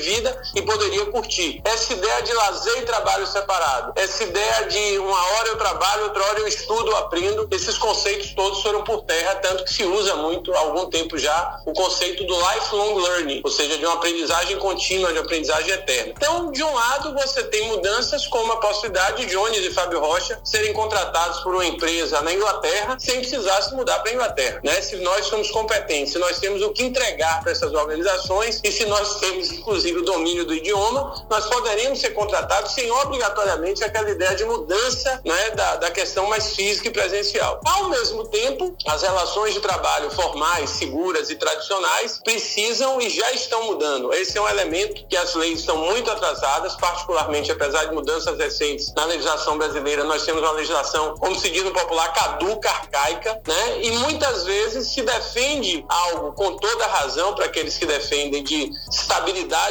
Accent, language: Brazilian, Portuguese